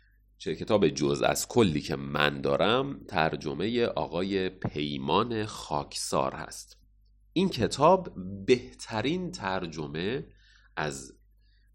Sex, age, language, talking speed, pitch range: male, 30-49, Persian, 90 wpm, 75-125 Hz